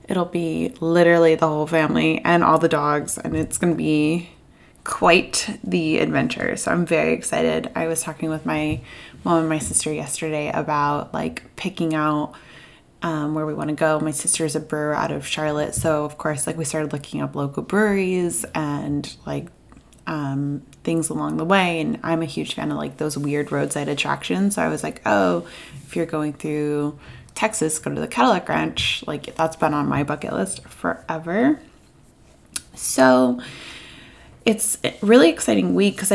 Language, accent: English, American